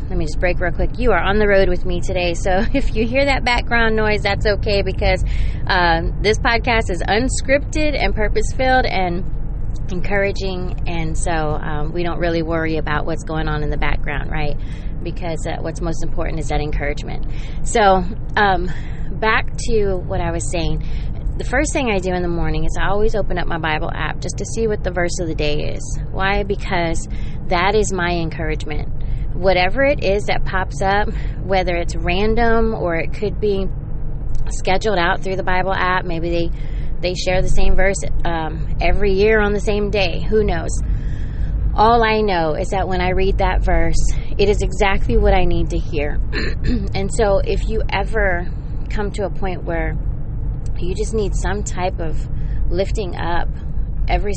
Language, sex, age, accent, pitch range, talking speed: English, female, 20-39, American, 150-195 Hz, 185 wpm